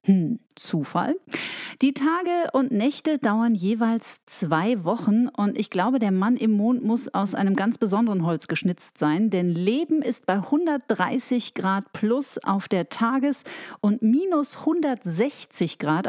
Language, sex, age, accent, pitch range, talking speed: German, female, 40-59, German, 185-250 Hz, 145 wpm